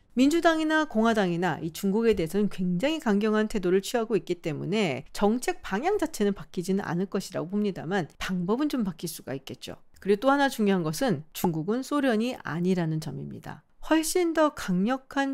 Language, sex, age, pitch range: Korean, female, 40-59, 180-270 Hz